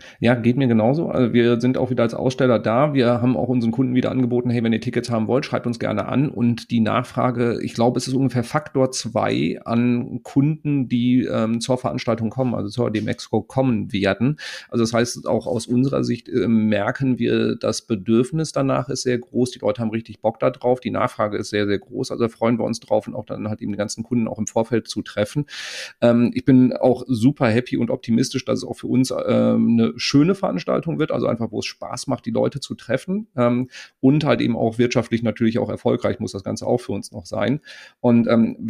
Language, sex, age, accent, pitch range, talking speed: German, male, 40-59, German, 115-135 Hz, 225 wpm